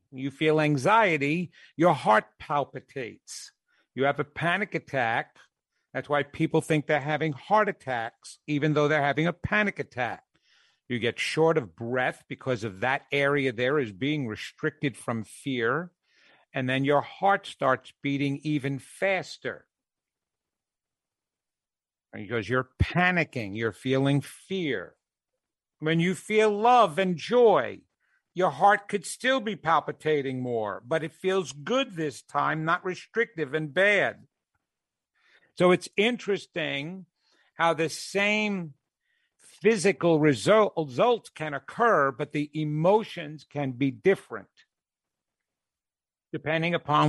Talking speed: 120 wpm